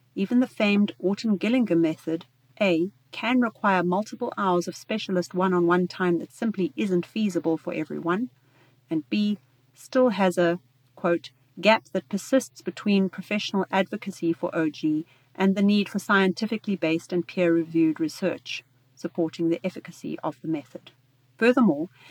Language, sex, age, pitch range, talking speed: German, female, 40-59, 160-200 Hz, 140 wpm